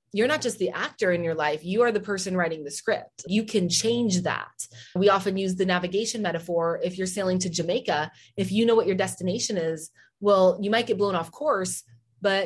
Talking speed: 215 wpm